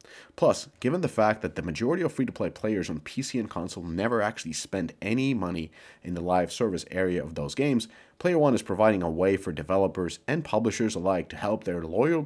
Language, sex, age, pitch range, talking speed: English, male, 30-49, 85-115 Hz, 205 wpm